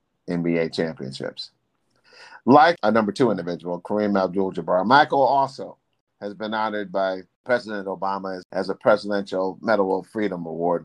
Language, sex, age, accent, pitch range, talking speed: English, male, 50-69, American, 105-160 Hz, 135 wpm